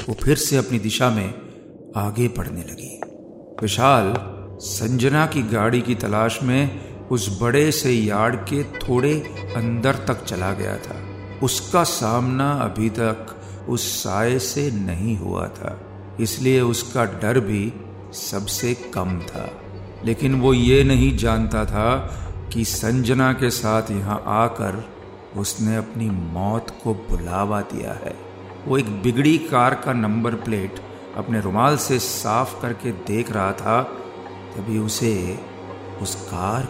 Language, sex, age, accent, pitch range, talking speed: Hindi, male, 50-69, native, 95-120 Hz, 135 wpm